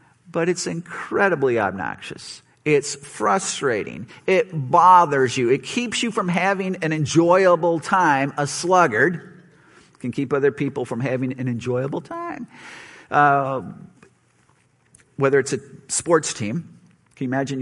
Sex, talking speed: male, 125 wpm